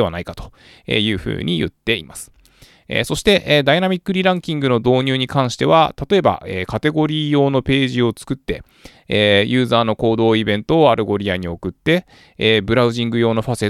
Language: Japanese